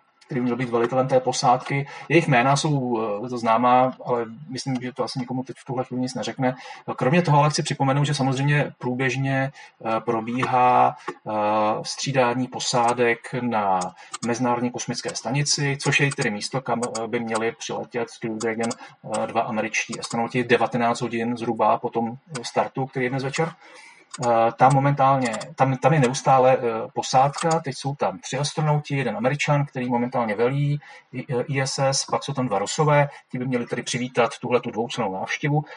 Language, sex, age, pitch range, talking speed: Czech, male, 30-49, 120-135 Hz, 165 wpm